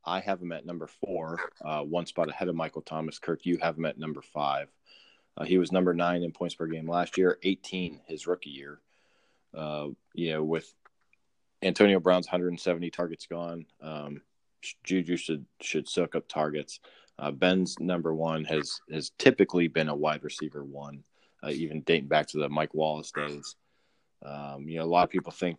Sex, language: male, English